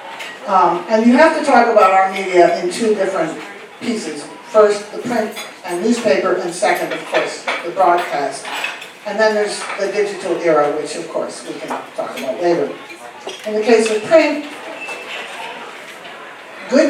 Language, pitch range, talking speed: English, 170-215 Hz, 155 wpm